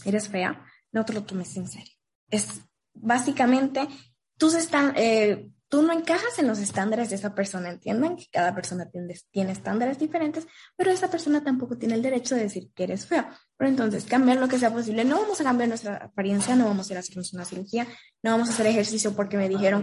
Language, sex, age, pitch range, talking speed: Spanish, female, 20-39, 200-270 Hz, 220 wpm